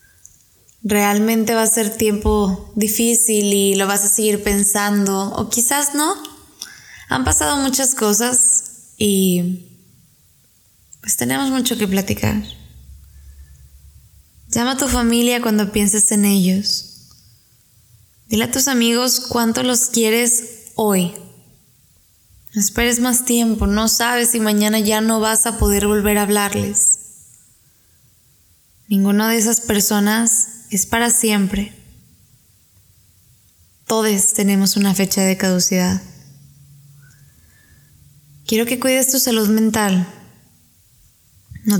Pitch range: 140-230 Hz